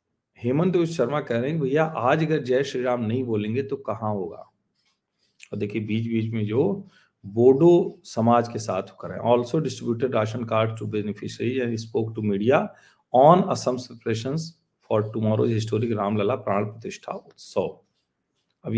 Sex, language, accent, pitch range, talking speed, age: male, Hindi, native, 105-135 Hz, 130 wpm, 40-59